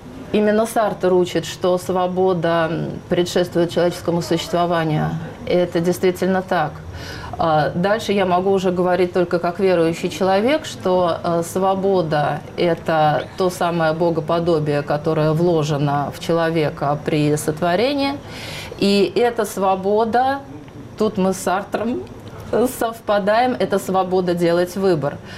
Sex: female